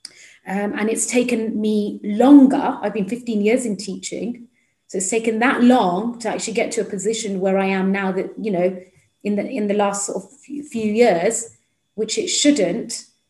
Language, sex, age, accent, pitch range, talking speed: English, female, 30-49, British, 200-230 Hz, 190 wpm